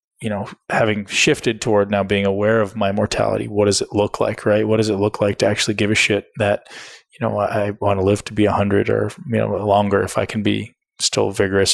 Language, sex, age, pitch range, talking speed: English, male, 20-39, 100-110 Hz, 240 wpm